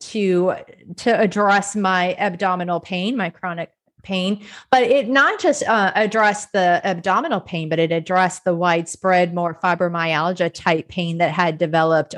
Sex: female